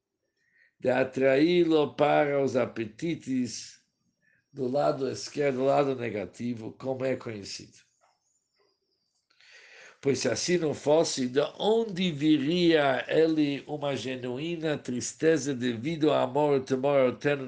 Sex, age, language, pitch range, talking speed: male, 60-79, Portuguese, 120-150 Hz, 110 wpm